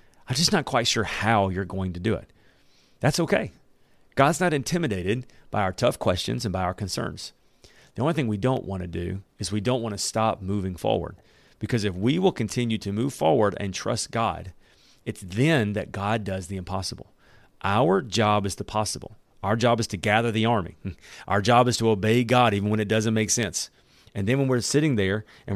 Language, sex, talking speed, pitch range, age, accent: English, male, 210 wpm, 95-120 Hz, 40-59, American